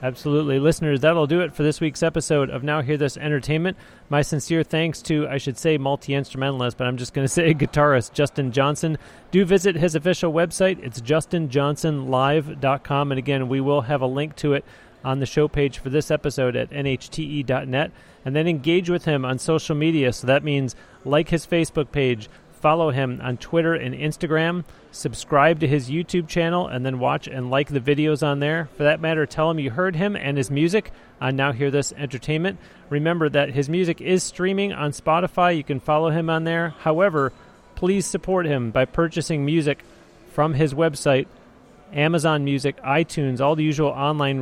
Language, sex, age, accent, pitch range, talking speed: English, male, 30-49, American, 135-165 Hz, 185 wpm